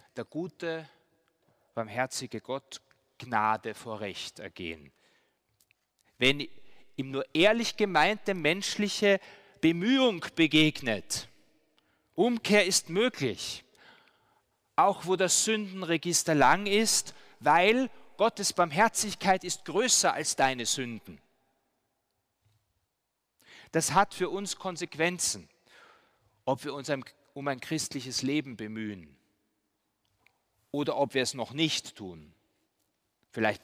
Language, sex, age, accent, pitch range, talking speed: German, male, 30-49, German, 110-170 Hz, 95 wpm